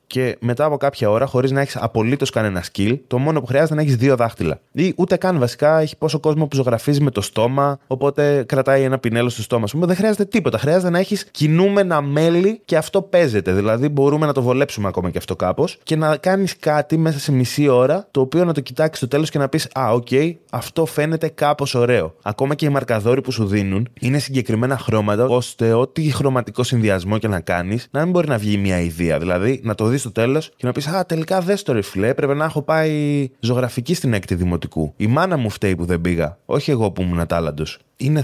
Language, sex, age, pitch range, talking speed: Greek, male, 20-39, 105-145 Hz, 220 wpm